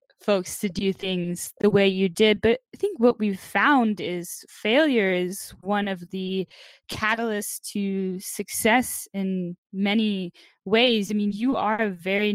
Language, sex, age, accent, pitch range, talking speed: English, female, 10-29, American, 190-225 Hz, 155 wpm